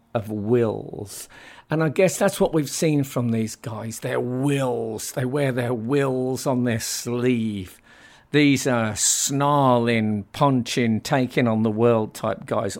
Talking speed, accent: 145 wpm, British